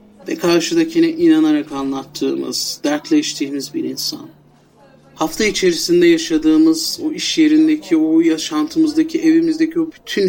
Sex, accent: male, native